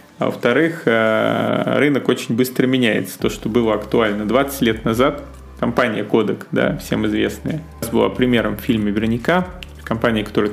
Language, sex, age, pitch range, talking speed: Russian, male, 30-49, 105-130 Hz, 150 wpm